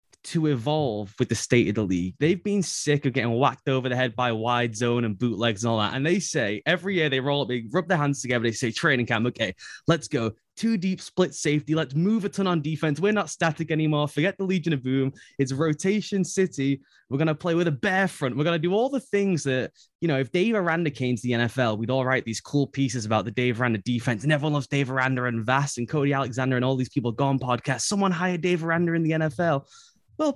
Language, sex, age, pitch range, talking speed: English, male, 20-39, 125-185 Hz, 250 wpm